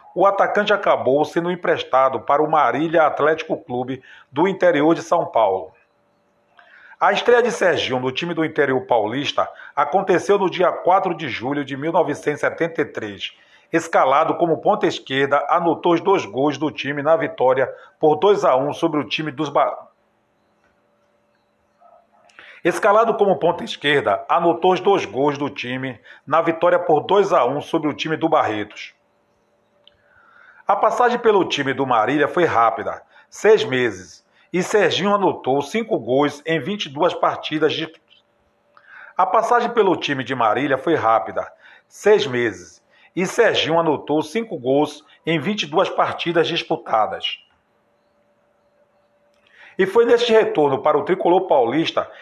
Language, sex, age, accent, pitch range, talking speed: Portuguese, male, 40-59, Brazilian, 145-195 Hz, 135 wpm